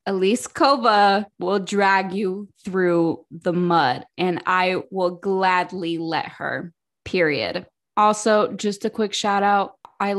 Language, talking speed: English, 130 wpm